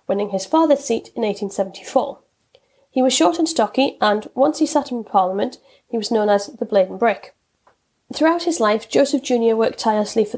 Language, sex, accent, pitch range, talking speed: English, female, British, 205-280 Hz, 190 wpm